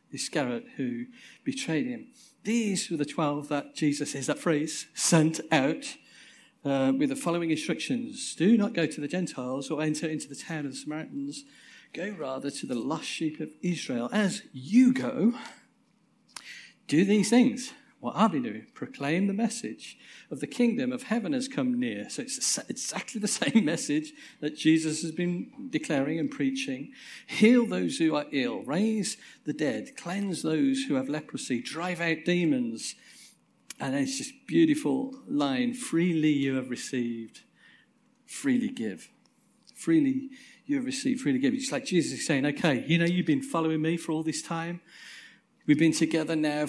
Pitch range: 160-265 Hz